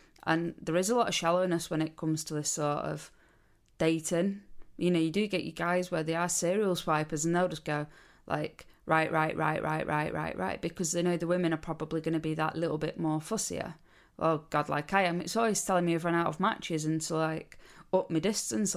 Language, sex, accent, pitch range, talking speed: English, female, British, 155-175 Hz, 235 wpm